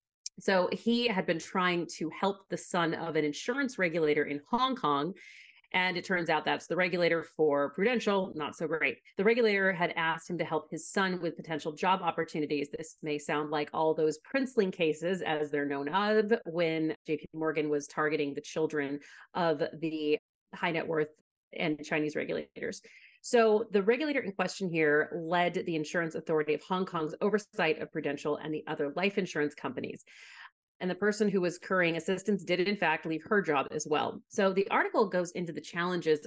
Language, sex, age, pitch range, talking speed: English, female, 30-49, 155-200 Hz, 185 wpm